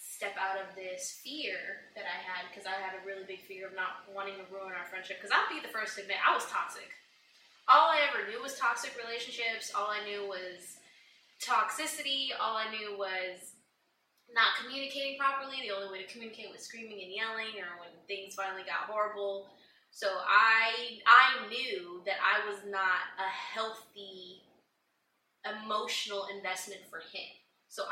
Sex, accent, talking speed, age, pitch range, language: female, American, 175 wpm, 20-39, 185-210 Hz, English